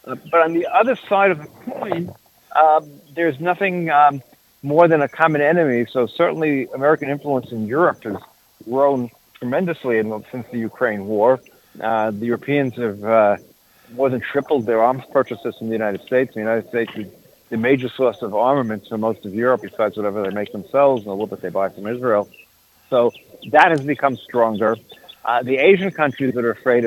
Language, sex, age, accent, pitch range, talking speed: English, male, 50-69, American, 115-140 Hz, 190 wpm